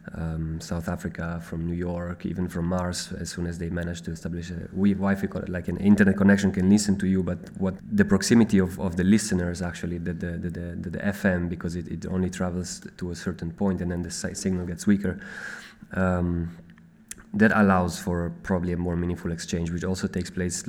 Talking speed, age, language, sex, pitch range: 200 wpm, 20-39, English, male, 85-95 Hz